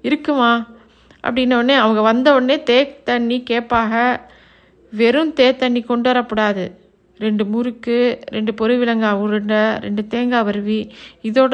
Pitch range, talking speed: 225-265 Hz, 115 wpm